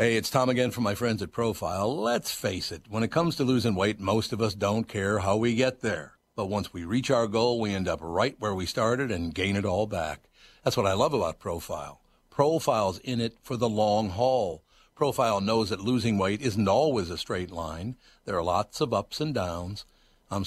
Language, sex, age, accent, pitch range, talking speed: English, male, 60-79, American, 95-125 Hz, 225 wpm